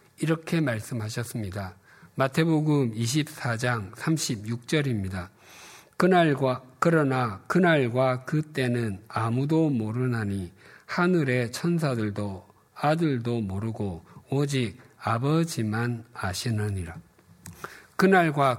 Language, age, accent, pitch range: Korean, 50-69, native, 110-150 Hz